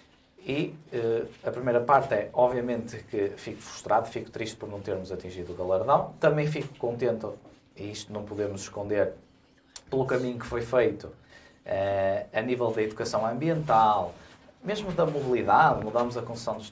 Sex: male